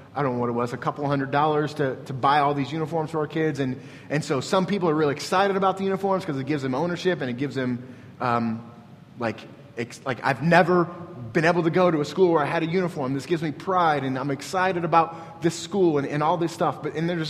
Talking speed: 260 wpm